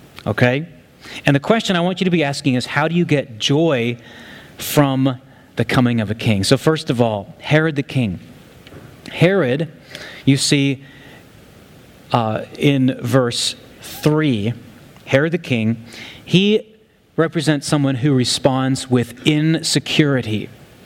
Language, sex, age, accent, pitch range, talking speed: English, male, 30-49, American, 130-165 Hz, 130 wpm